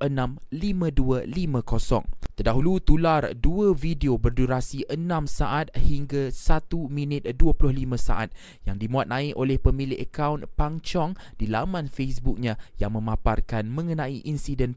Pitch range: 125-150 Hz